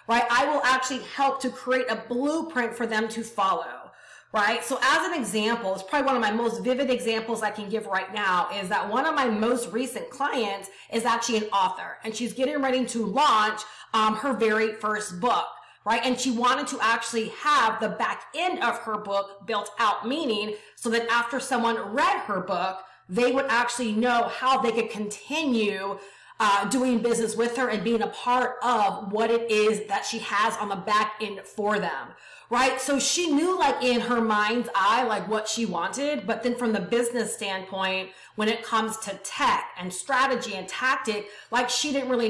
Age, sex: 30-49, female